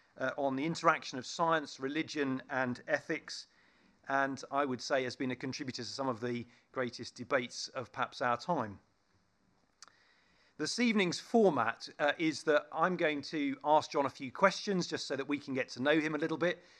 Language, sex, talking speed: English, male, 190 wpm